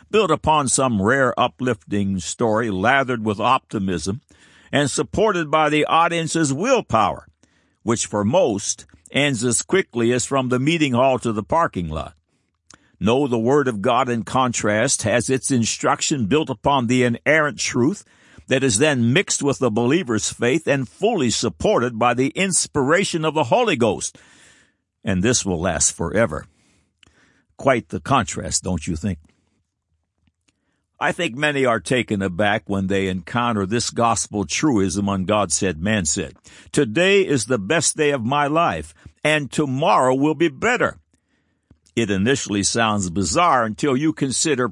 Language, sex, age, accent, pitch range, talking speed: English, male, 60-79, American, 100-140 Hz, 150 wpm